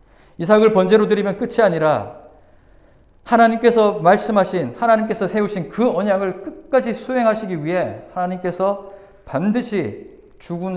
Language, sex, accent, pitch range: Korean, male, native, 155-215 Hz